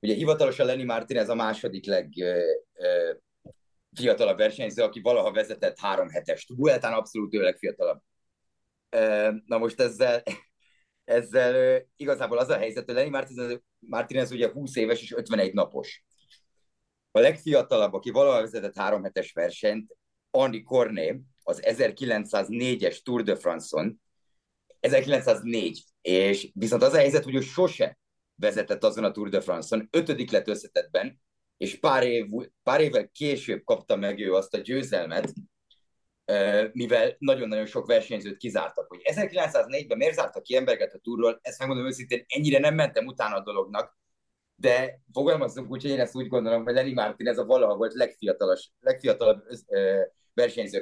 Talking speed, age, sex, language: 140 wpm, 30-49, male, Hungarian